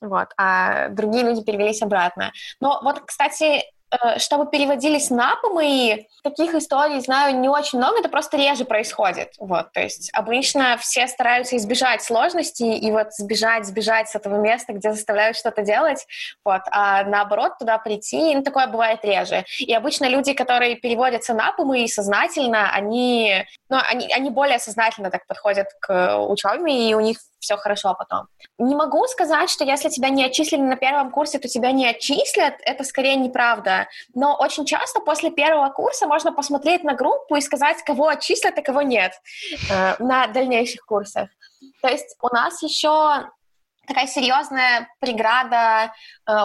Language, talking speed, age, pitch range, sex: Russian, 160 wpm, 20-39, 220-290 Hz, female